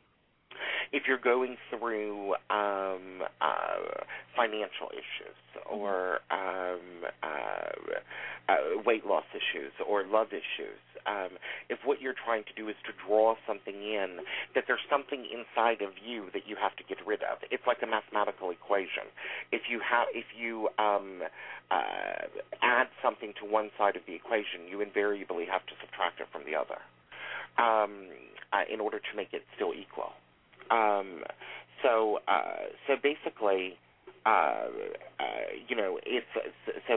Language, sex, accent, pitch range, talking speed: English, male, American, 95-140 Hz, 150 wpm